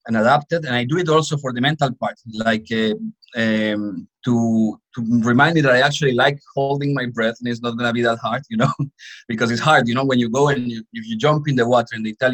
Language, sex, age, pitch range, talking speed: English, male, 30-49, 110-140 Hz, 260 wpm